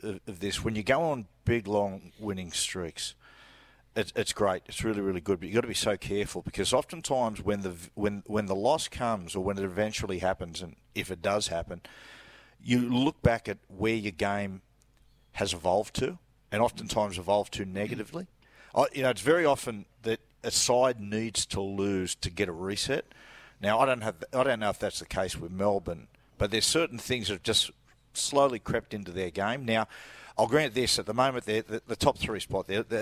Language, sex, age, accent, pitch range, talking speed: English, male, 50-69, Australian, 100-120 Hz, 205 wpm